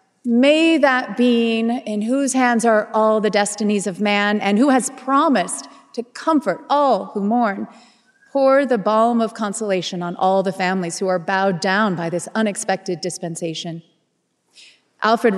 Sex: female